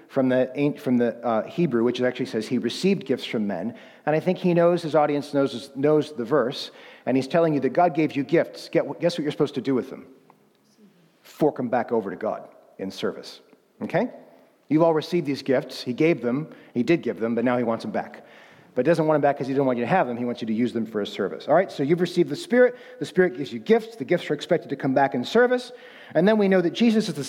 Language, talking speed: English, 270 wpm